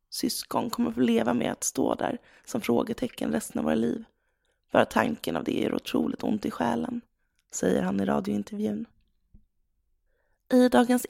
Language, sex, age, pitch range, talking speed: Swedish, female, 30-49, 205-250 Hz, 155 wpm